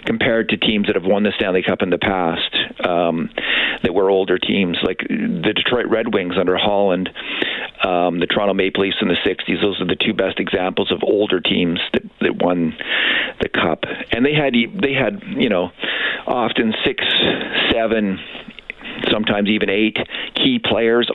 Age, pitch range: 50-69, 95-120 Hz